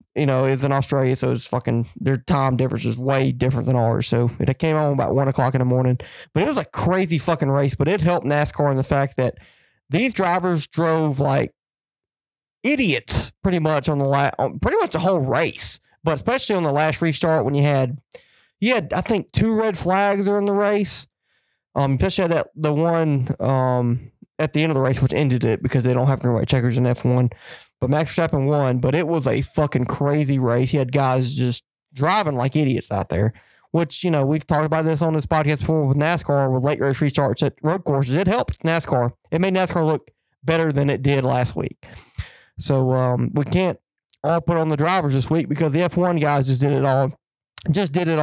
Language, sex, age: English, male, 20-39